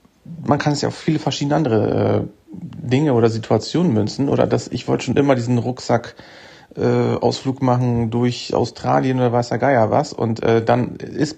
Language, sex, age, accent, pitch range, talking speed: German, male, 40-59, German, 125-150 Hz, 170 wpm